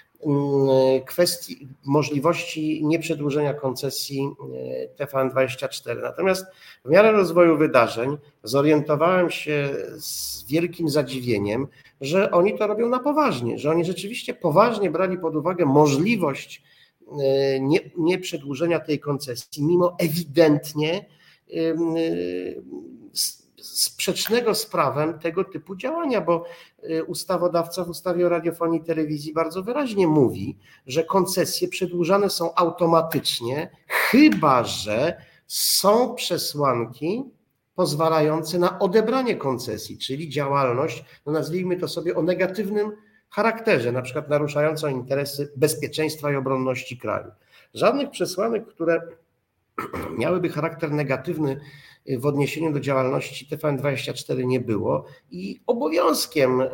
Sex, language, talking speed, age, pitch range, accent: male, Polish, 105 wpm, 50-69, 140-180 Hz, native